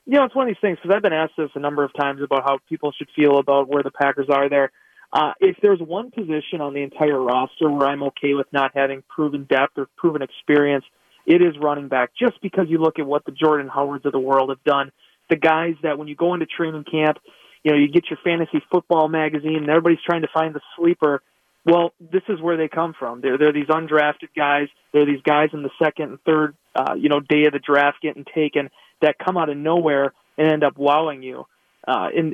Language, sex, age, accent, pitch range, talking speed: English, male, 30-49, American, 145-170 Hz, 240 wpm